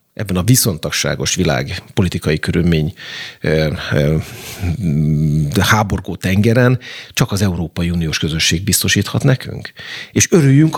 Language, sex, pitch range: Hungarian, male, 85-110 Hz